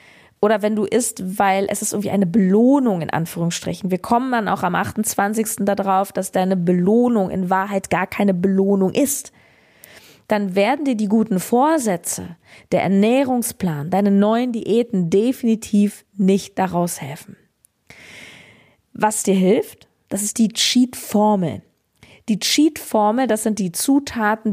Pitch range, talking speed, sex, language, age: 195-235 Hz, 135 wpm, female, German, 20-39